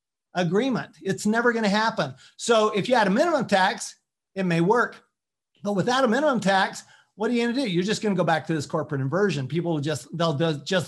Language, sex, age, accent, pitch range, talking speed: English, male, 40-59, American, 155-195 Hz, 235 wpm